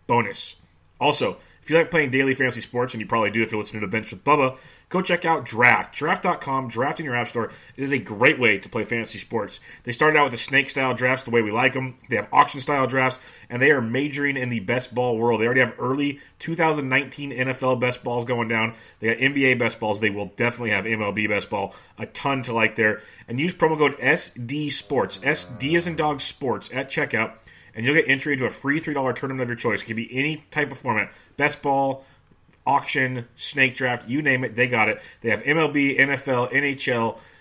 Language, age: English, 30-49